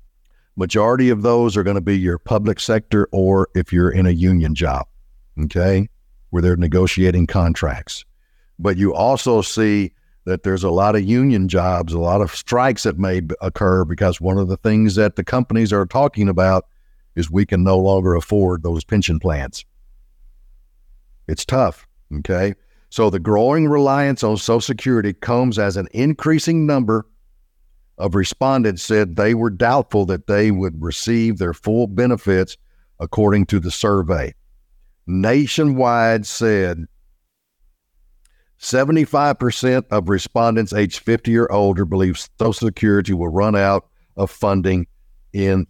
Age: 60-79